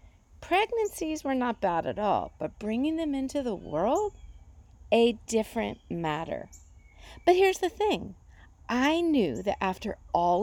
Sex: female